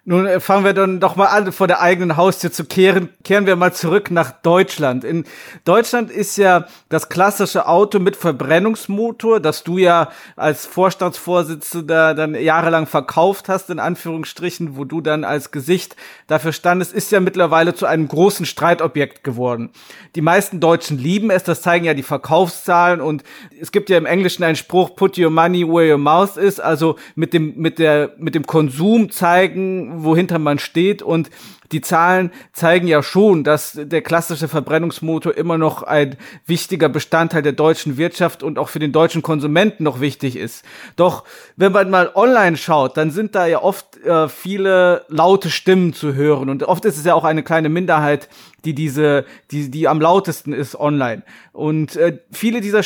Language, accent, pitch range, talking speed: German, German, 155-190 Hz, 175 wpm